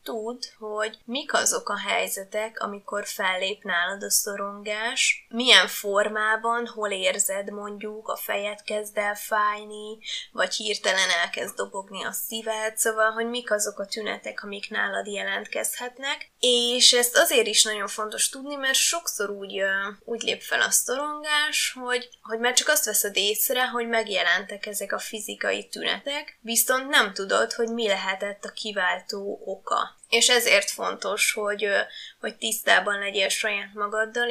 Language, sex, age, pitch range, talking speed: Hungarian, female, 20-39, 205-240 Hz, 145 wpm